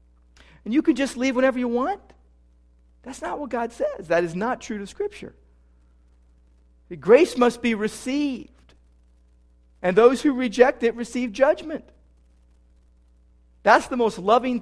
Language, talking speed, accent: English, 140 wpm, American